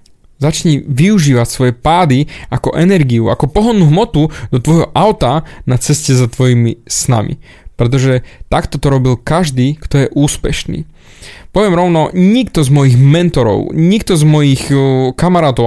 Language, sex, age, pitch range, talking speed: Slovak, male, 20-39, 130-175 Hz, 135 wpm